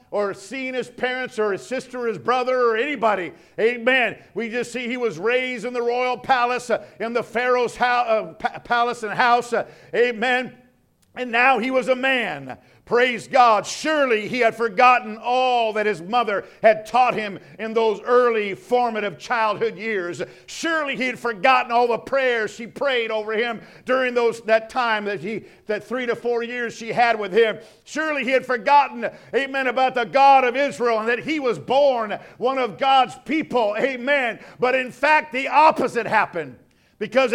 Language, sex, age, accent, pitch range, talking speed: English, male, 50-69, American, 220-265 Hz, 175 wpm